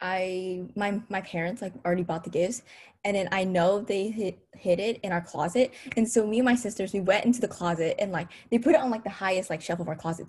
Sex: female